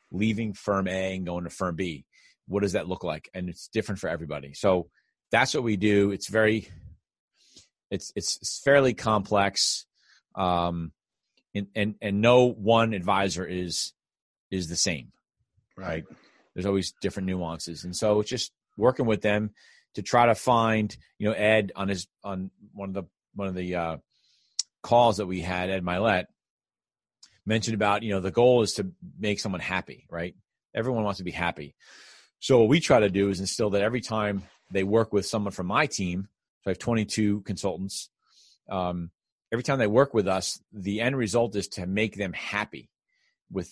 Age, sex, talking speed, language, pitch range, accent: 30-49, male, 180 wpm, English, 90-110 Hz, American